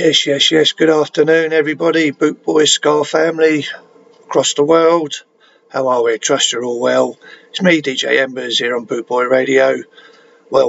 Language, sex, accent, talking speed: English, male, British, 170 wpm